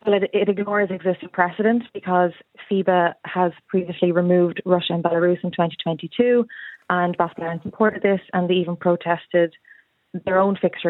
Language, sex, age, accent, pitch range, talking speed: English, female, 20-39, Irish, 175-195 Hz, 150 wpm